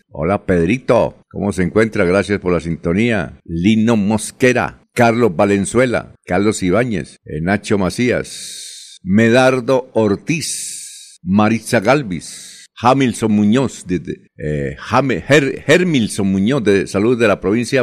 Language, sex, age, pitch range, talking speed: Spanish, male, 60-79, 90-120 Hz, 125 wpm